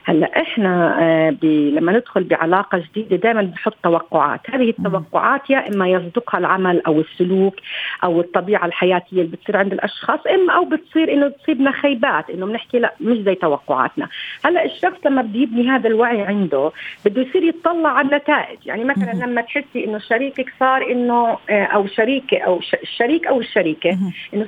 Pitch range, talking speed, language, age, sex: 190-270 Hz, 155 wpm, Arabic, 40-59, female